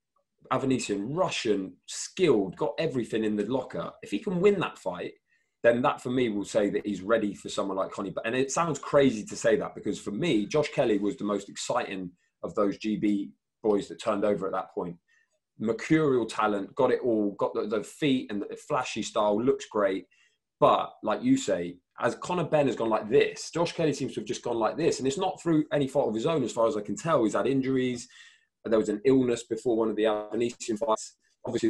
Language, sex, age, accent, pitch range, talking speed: English, male, 20-39, British, 110-155 Hz, 225 wpm